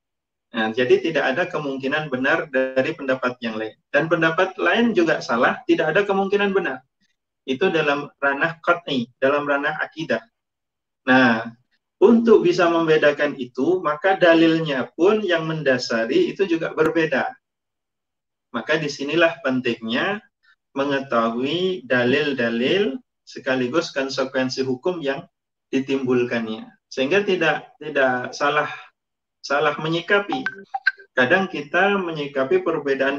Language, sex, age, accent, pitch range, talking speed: Indonesian, male, 30-49, native, 130-185 Hz, 105 wpm